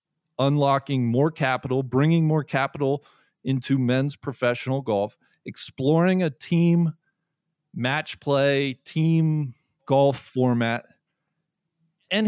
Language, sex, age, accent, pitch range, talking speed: English, male, 40-59, American, 130-175 Hz, 95 wpm